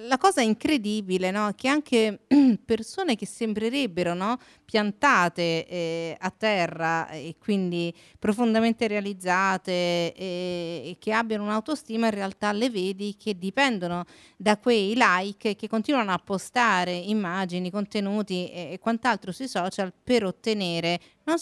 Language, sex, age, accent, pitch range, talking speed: Italian, female, 40-59, native, 190-250 Hz, 120 wpm